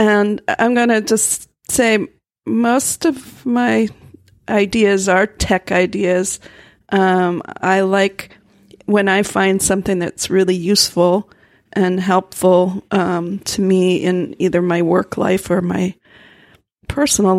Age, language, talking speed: 40-59, English, 120 wpm